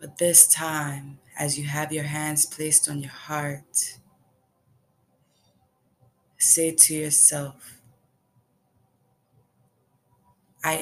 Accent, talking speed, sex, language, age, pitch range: American, 90 wpm, female, English, 20-39, 130-150 Hz